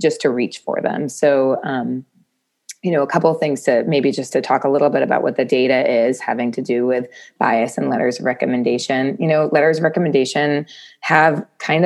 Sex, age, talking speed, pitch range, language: female, 20-39, 215 wpm, 135-155 Hz, English